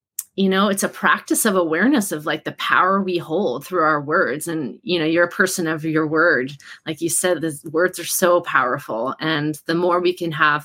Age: 30-49